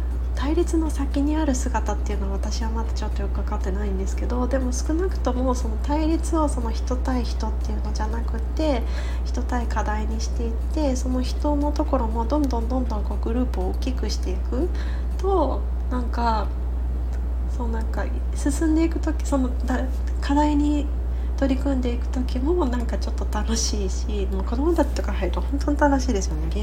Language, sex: Japanese, female